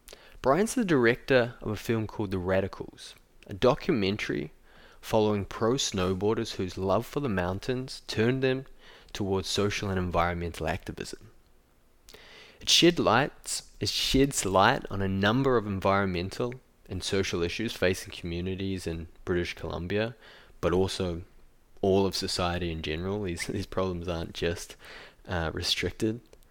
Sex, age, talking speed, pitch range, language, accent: male, 20-39, 135 wpm, 90-115 Hz, English, Australian